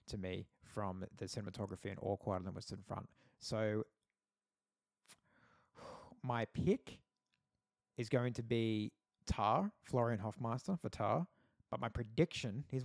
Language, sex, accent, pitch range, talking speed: English, male, Australian, 105-130 Hz, 120 wpm